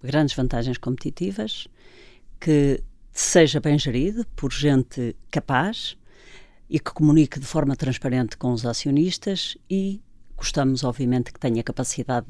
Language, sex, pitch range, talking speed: Portuguese, female, 130-165 Hz, 120 wpm